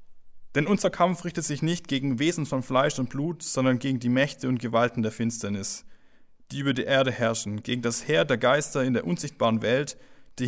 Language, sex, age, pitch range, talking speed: German, male, 20-39, 115-145 Hz, 200 wpm